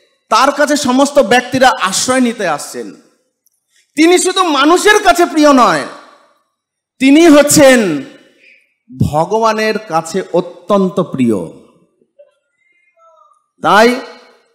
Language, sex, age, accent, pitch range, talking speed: English, male, 50-69, Indian, 215-280 Hz, 85 wpm